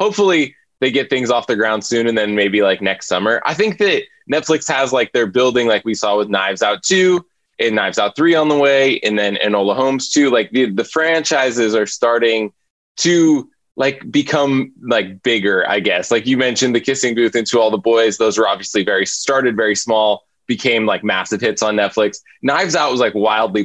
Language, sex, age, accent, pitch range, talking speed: English, male, 20-39, American, 105-140 Hz, 215 wpm